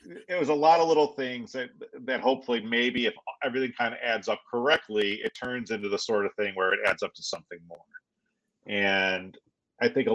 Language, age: English, 40-59